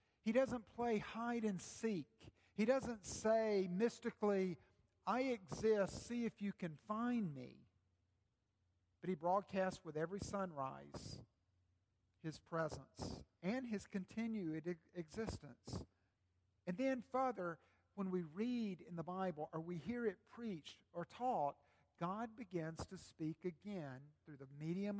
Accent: American